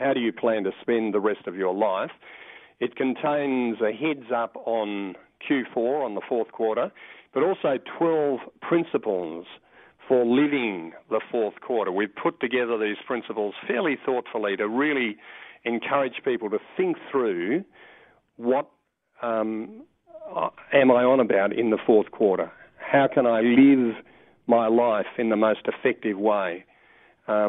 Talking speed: 145 wpm